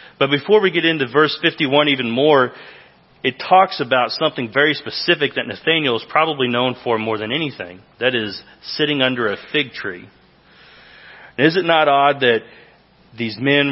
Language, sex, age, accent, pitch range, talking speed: English, male, 40-59, American, 115-145 Hz, 165 wpm